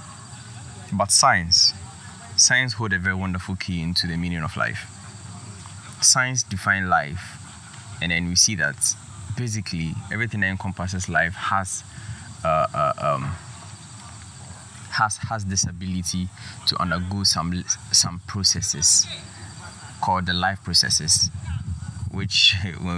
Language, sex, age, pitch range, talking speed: English, male, 20-39, 90-110 Hz, 120 wpm